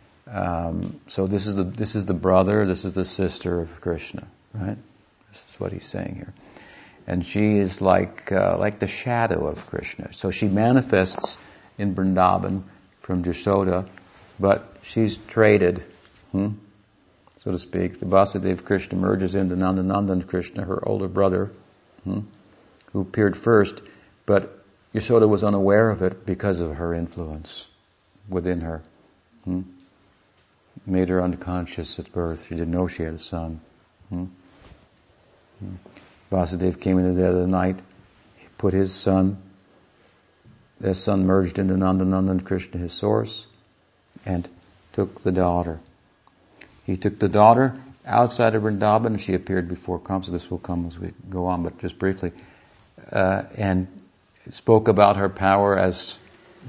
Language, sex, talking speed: English, male, 150 wpm